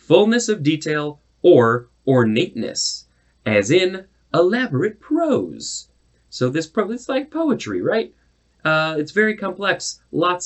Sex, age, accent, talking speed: male, 30-49, American, 115 wpm